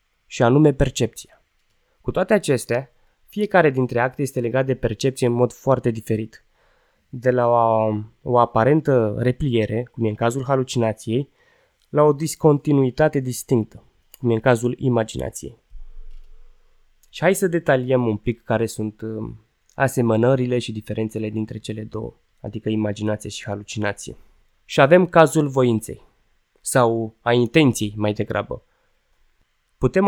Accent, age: native, 20-39